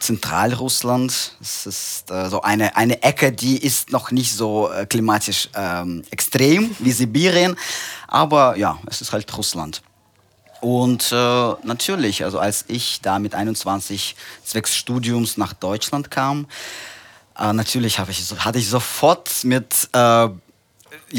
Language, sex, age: German, male, 20-39